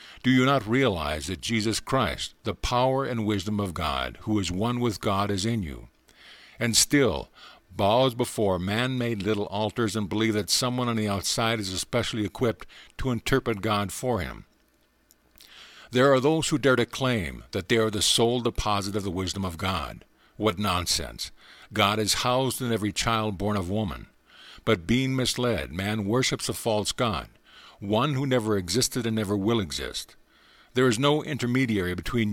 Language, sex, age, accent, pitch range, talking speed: English, male, 50-69, American, 100-125 Hz, 175 wpm